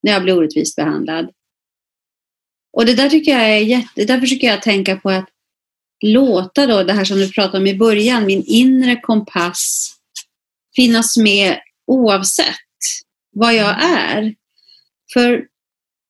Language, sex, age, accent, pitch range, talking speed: Swedish, female, 30-49, native, 185-250 Hz, 140 wpm